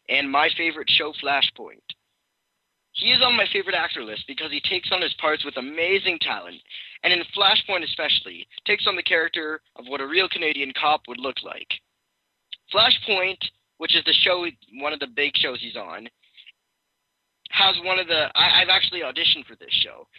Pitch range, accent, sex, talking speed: 130-180 Hz, American, male, 180 wpm